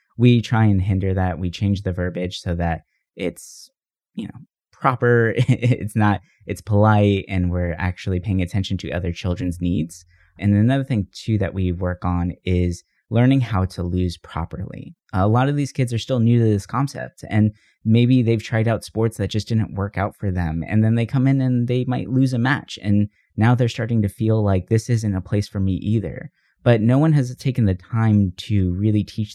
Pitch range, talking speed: 90-115 Hz, 205 wpm